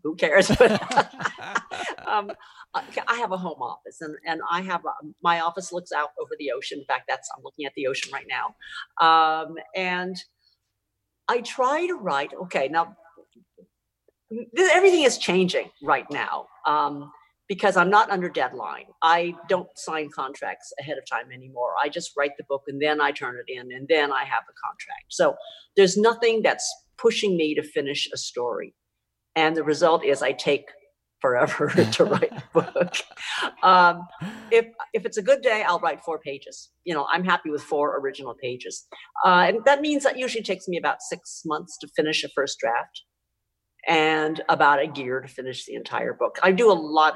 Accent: American